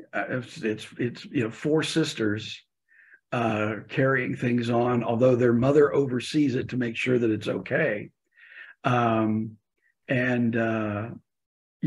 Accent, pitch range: American, 110-135 Hz